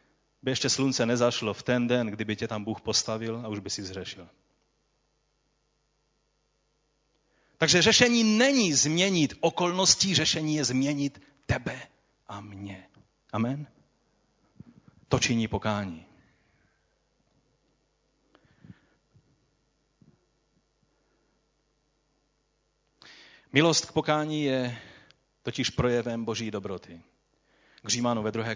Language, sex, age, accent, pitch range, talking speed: Czech, male, 30-49, native, 115-165 Hz, 90 wpm